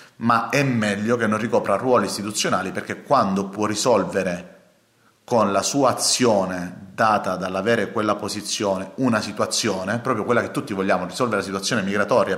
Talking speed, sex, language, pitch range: 150 wpm, male, Italian, 100-120 Hz